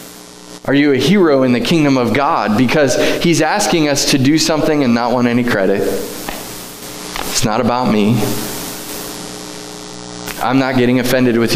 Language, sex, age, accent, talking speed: English, male, 20-39, American, 155 wpm